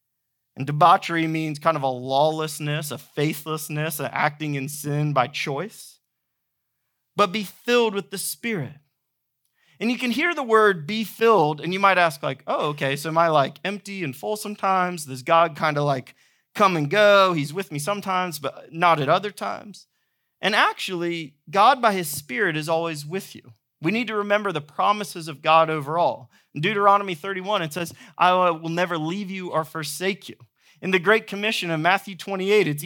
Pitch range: 145-200 Hz